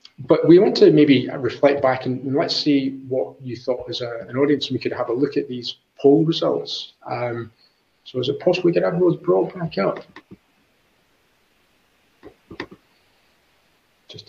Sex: male